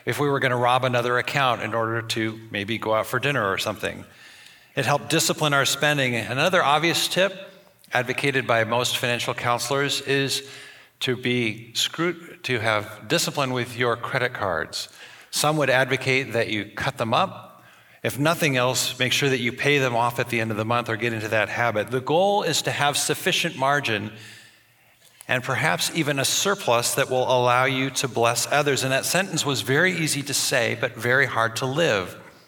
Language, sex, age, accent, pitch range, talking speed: English, male, 50-69, American, 120-150 Hz, 190 wpm